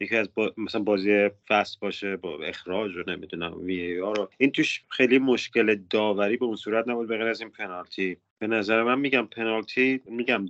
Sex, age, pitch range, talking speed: male, 30-49, 95-120 Hz, 175 wpm